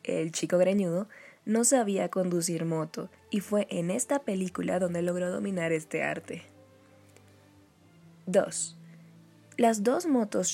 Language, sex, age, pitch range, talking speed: Spanish, female, 20-39, 170-220 Hz, 120 wpm